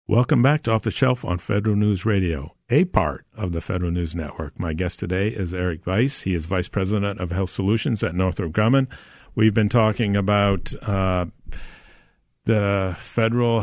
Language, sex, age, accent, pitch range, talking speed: English, male, 50-69, American, 90-105 Hz, 175 wpm